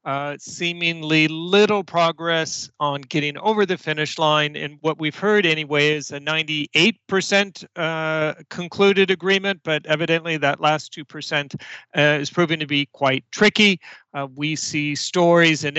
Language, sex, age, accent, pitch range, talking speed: English, male, 40-59, American, 145-180 Hz, 145 wpm